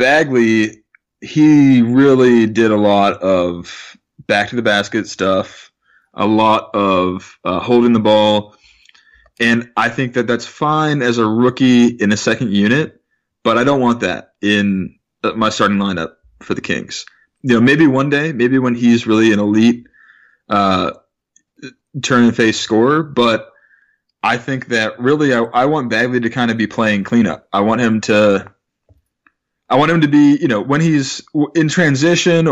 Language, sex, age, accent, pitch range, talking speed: English, male, 20-39, American, 105-130 Hz, 155 wpm